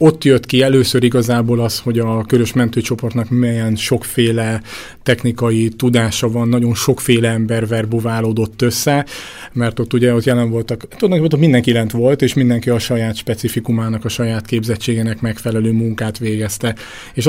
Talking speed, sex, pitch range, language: 150 wpm, male, 115-125 Hz, Hungarian